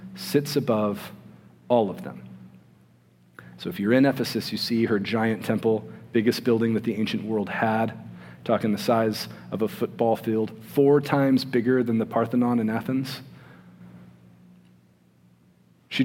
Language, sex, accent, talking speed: English, male, American, 140 wpm